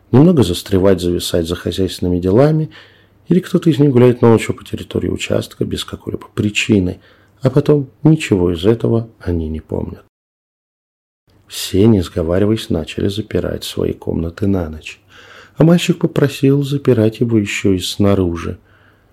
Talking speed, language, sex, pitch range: 135 wpm, Russian, male, 95-115 Hz